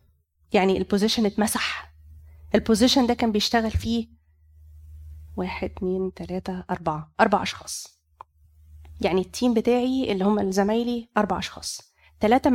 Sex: female